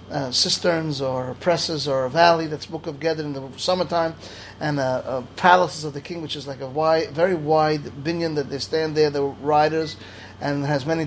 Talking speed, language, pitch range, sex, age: 210 wpm, English, 140-170 Hz, male, 30-49